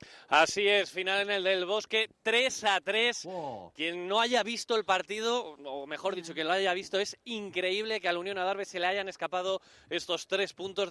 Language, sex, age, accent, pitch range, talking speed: Spanish, male, 30-49, Spanish, 160-195 Hz, 210 wpm